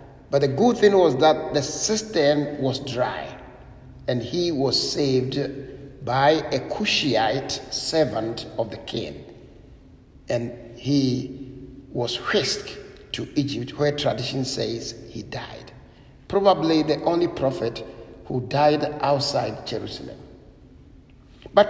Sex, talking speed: male, 115 wpm